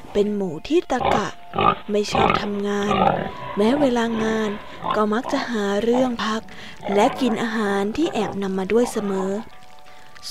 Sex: female